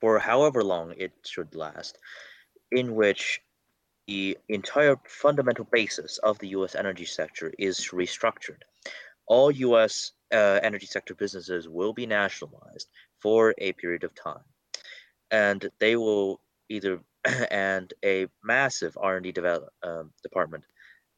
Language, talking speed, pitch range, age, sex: English, 125 wpm, 90-110 Hz, 30-49, male